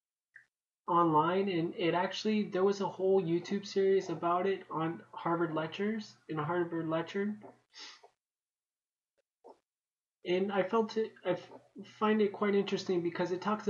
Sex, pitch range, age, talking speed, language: male, 150-185 Hz, 20-39, 130 wpm, English